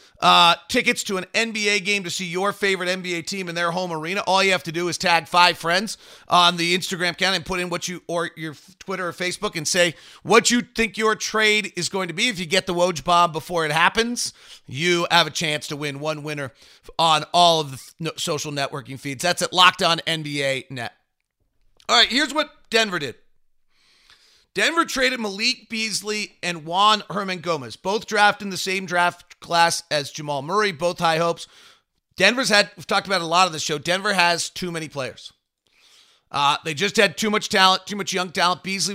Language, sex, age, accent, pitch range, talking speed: English, male, 40-59, American, 165-195 Hz, 205 wpm